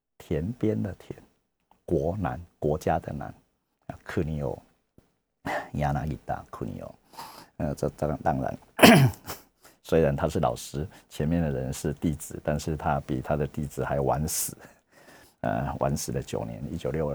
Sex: male